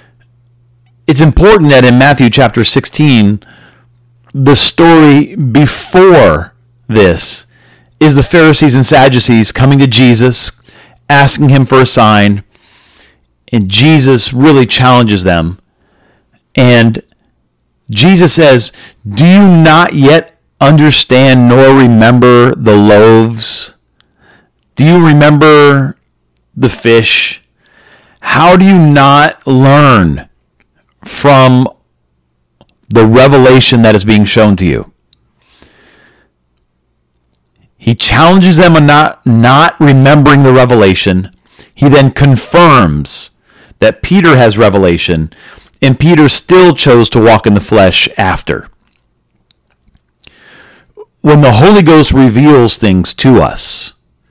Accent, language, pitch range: American, English, 105-145 Hz